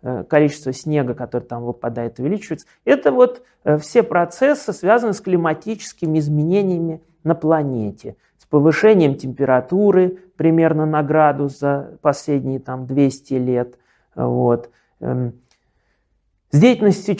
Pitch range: 135-190 Hz